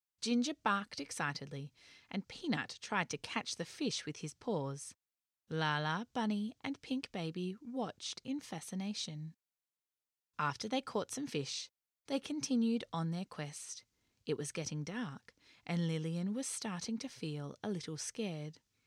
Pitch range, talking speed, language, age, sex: 150-230 Hz, 140 wpm, English, 20-39, female